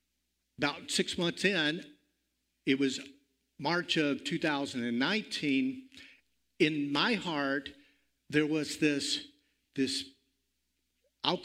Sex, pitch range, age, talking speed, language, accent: male, 130-175 Hz, 50-69, 90 wpm, English, American